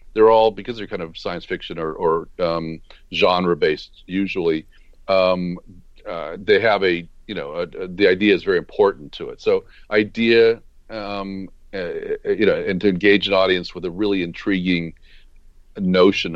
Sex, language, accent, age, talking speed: male, English, American, 40-59, 165 wpm